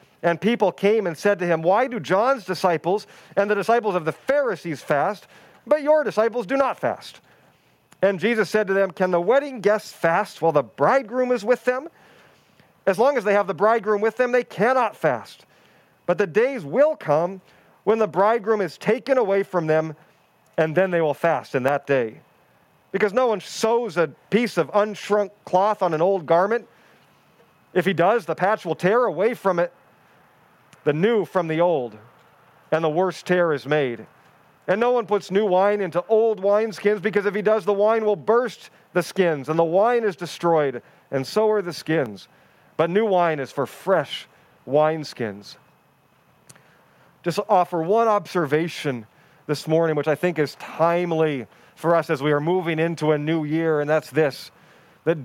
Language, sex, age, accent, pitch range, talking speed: English, male, 40-59, American, 160-215 Hz, 180 wpm